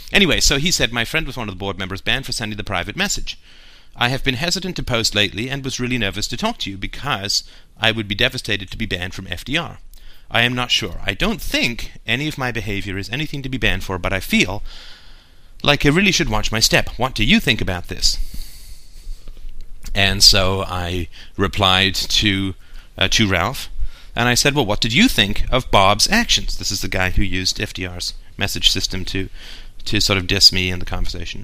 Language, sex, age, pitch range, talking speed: English, male, 30-49, 95-130 Hz, 215 wpm